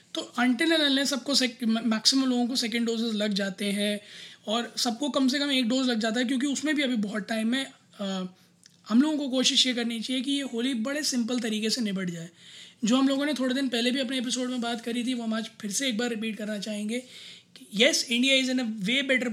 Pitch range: 200-245 Hz